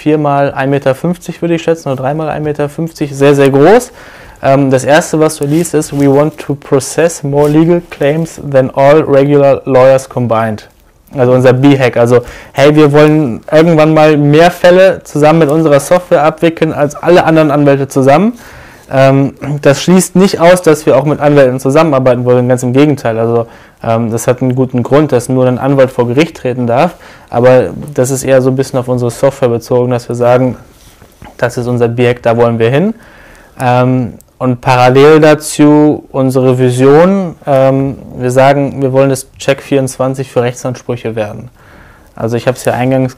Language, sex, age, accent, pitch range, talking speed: German, male, 20-39, German, 120-145 Hz, 170 wpm